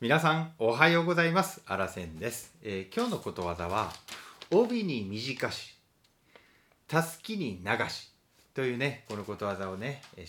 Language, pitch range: Japanese, 95-130 Hz